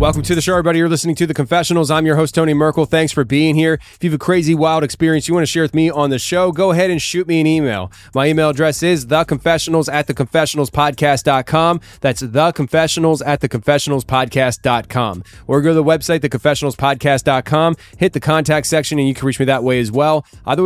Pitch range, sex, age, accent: 140-160 Hz, male, 20-39, American